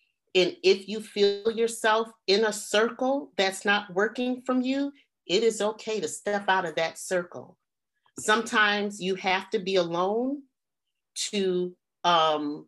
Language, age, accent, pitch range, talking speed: English, 40-59, American, 165-210 Hz, 140 wpm